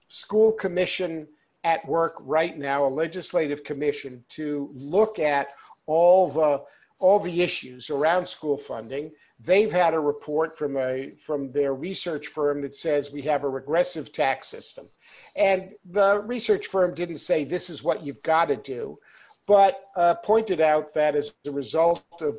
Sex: male